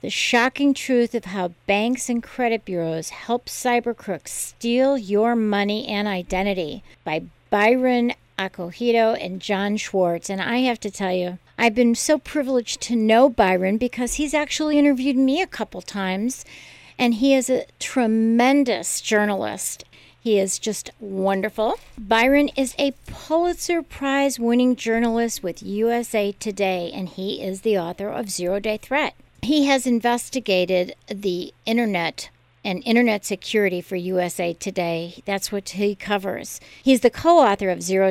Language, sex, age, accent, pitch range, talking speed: English, female, 50-69, American, 190-250 Hz, 145 wpm